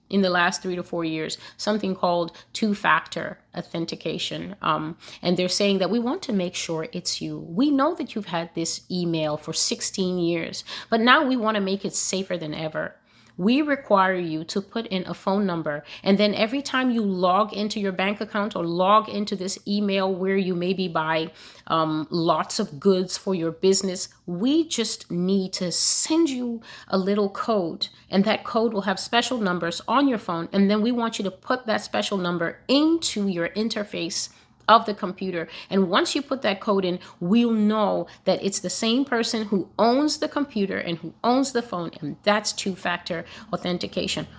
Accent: American